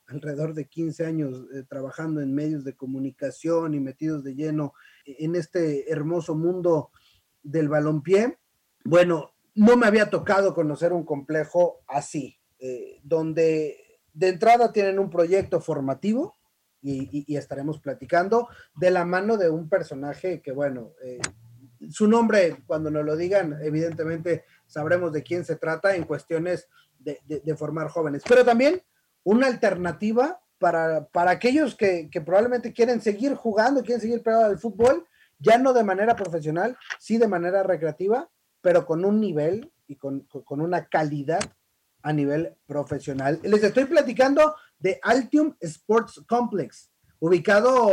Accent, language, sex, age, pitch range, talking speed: Mexican, Spanish, male, 30-49, 155-230 Hz, 145 wpm